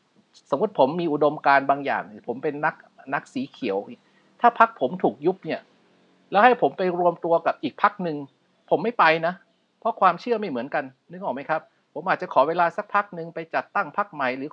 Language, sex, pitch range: Thai, male, 140-185 Hz